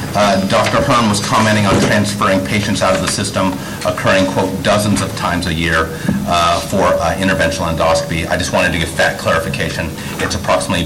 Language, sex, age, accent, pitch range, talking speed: English, male, 30-49, American, 80-95 Hz, 180 wpm